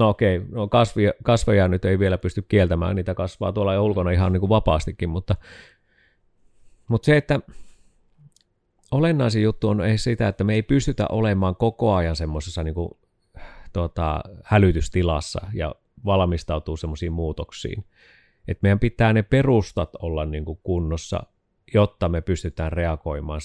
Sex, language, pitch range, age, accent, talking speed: male, Finnish, 90-115 Hz, 30-49, native, 145 wpm